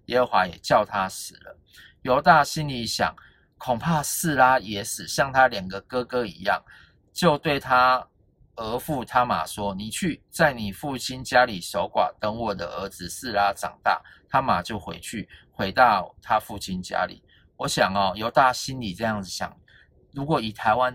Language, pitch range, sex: Chinese, 95-125 Hz, male